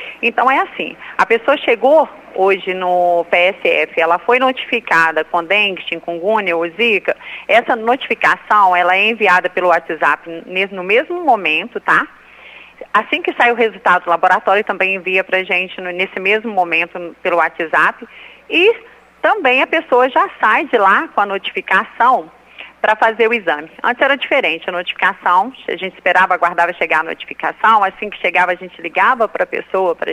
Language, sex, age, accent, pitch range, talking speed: Portuguese, female, 40-59, Brazilian, 175-220 Hz, 165 wpm